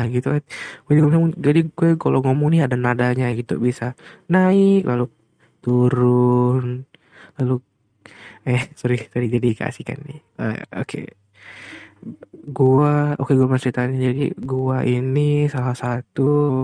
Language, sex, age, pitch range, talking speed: Indonesian, male, 20-39, 120-140 Hz, 115 wpm